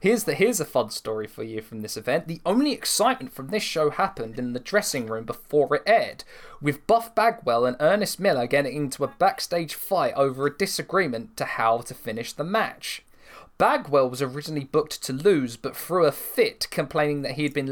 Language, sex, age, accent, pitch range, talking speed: English, male, 20-39, British, 135-180 Hz, 205 wpm